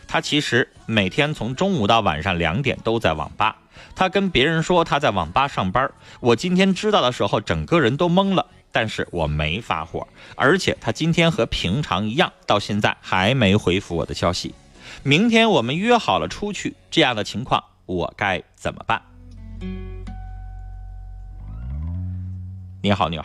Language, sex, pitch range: Chinese, male, 90-130 Hz